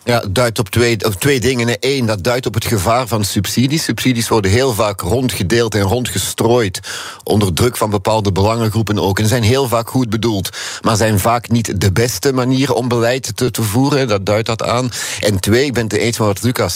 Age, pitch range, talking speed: 50-69, 110-130 Hz, 210 wpm